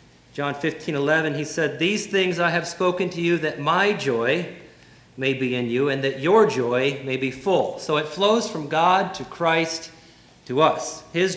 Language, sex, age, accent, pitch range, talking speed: English, male, 40-59, American, 125-170 Hz, 190 wpm